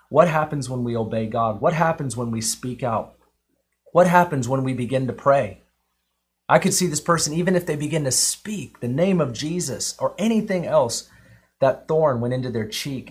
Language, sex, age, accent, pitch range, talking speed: English, male, 30-49, American, 130-200 Hz, 195 wpm